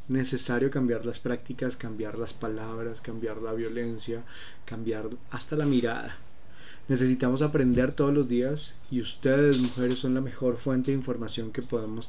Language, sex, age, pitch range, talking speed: Spanish, male, 30-49, 110-130 Hz, 150 wpm